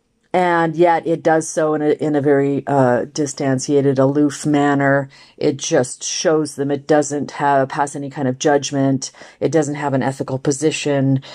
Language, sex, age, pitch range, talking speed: English, female, 40-59, 140-170 Hz, 170 wpm